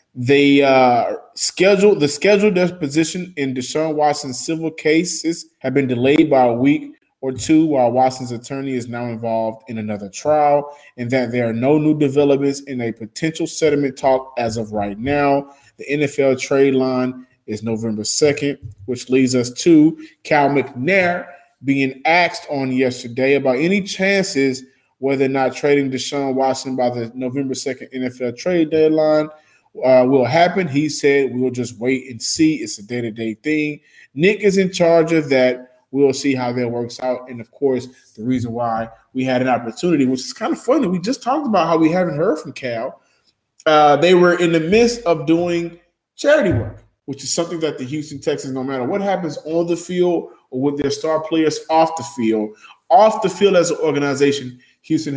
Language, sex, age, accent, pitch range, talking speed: English, male, 20-39, American, 125-160 Hz, 180 wpm